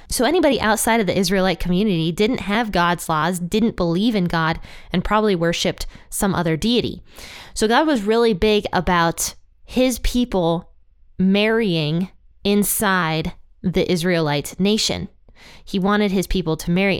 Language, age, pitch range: English, 20-39, 170-215 Hz